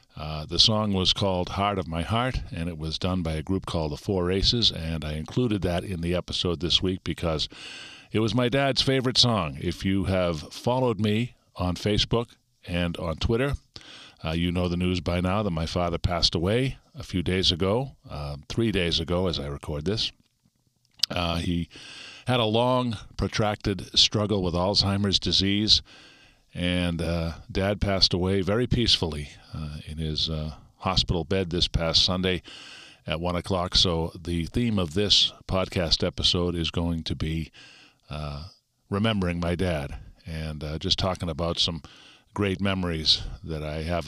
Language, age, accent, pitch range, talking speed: English, 50-69, American, 85-100 Hz, 170 wpm